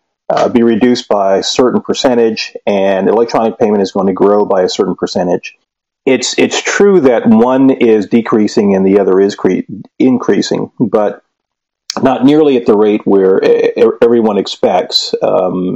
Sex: male